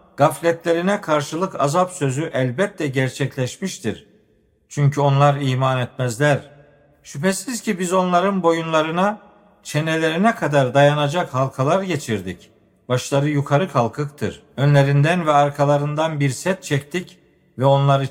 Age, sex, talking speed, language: 50-69, male, 105 wpm, Turkish